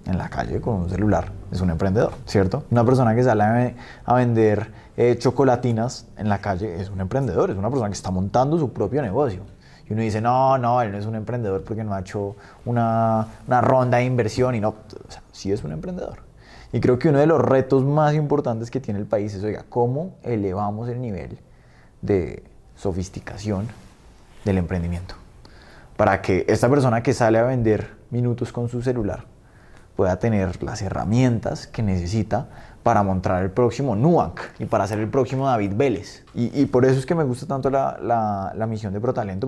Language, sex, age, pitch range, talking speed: Spanish, male, 20-39, 100-130 Hz, 200 wpm